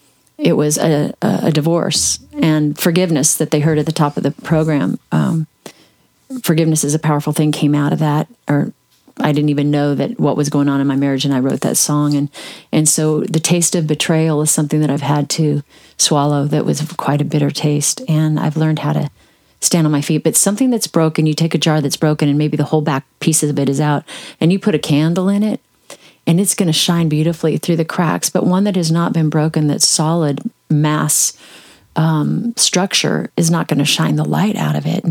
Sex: female